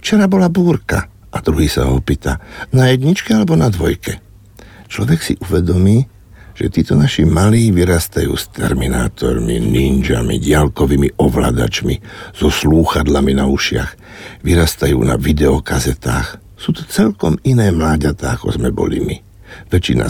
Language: Slovak